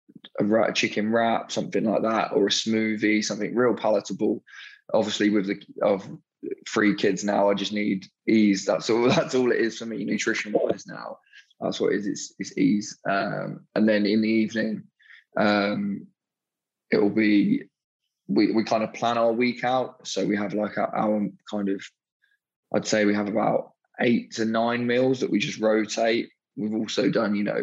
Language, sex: English, male